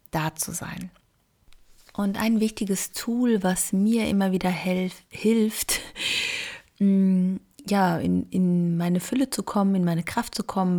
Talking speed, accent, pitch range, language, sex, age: 130 wpm, German, 180-210 Hz, German, female, 30-49